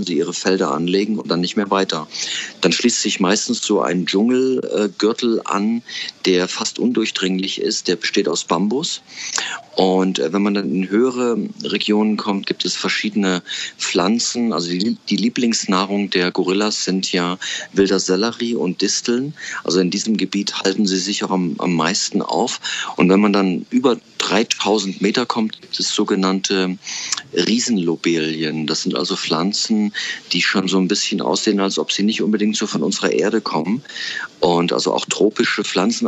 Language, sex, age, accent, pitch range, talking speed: German, male, 40-59, German, 95-110 Hz, 160 wpm